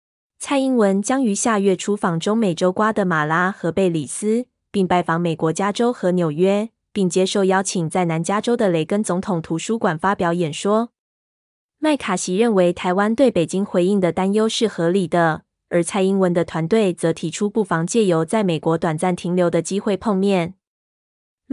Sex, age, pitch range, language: female, 20-39, 175-210 Hz, Chinese